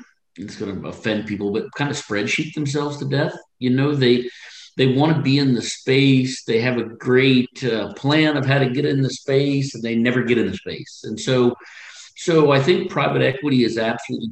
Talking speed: 215 wpm